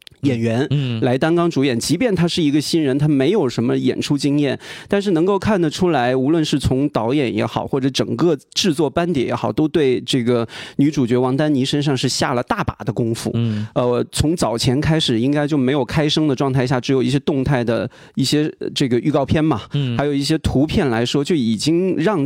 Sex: male